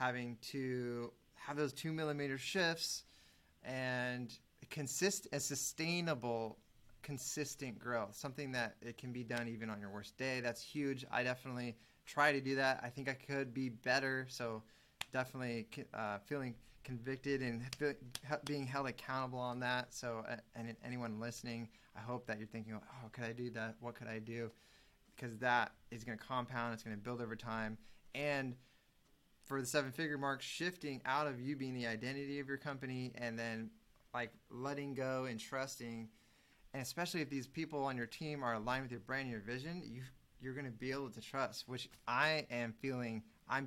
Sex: male